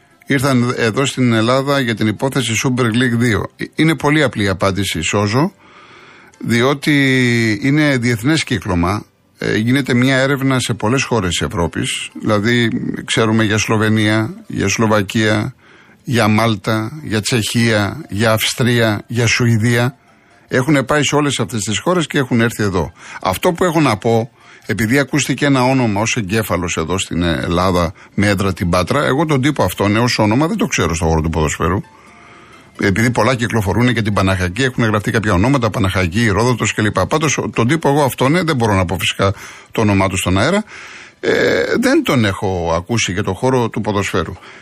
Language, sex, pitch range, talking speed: Greek, male, 105-135 Hz, 165 wpm